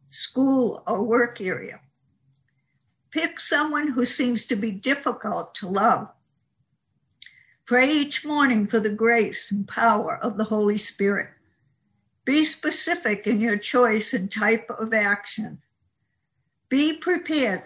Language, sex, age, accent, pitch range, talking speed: English, female, 60-79, American, 210-265 Hz, 120 wpm